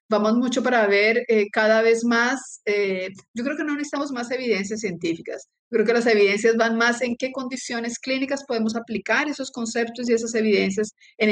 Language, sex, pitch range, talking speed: Spanish, female, 215-270 Hz, 185 wpm